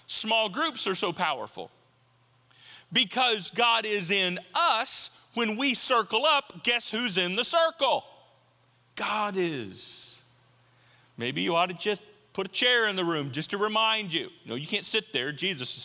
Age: 40-59